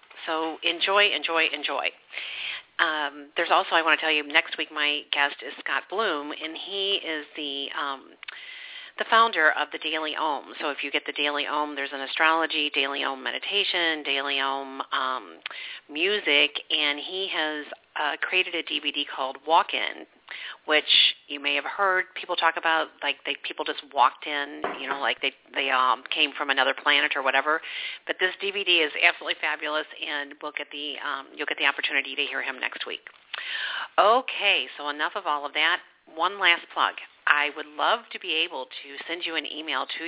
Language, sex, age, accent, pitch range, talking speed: English, female, 40-59, American, 145-165 Hz, 185 wpm